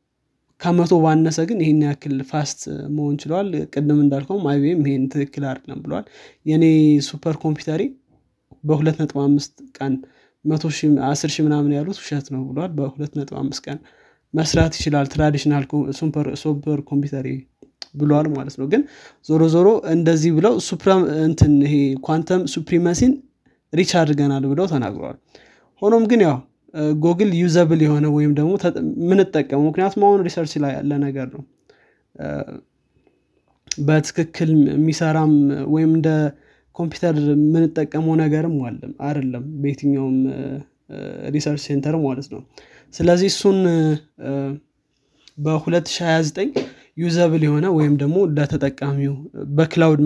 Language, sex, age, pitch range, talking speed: Amharic, male, 20-39, 140-160 Hz, 95 wpm